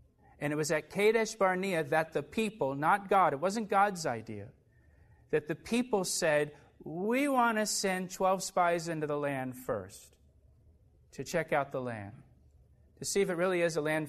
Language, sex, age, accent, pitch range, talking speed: English, male, 40-59, American, 125-170 Hz, 180 wpm